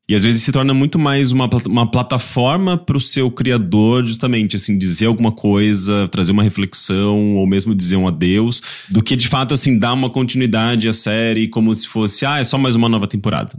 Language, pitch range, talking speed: English, 100-130 Hz, 210 wpm